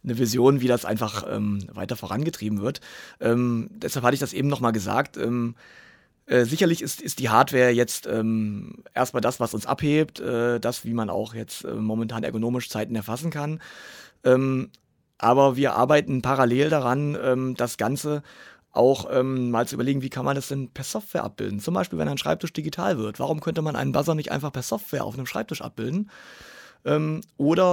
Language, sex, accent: German, male, German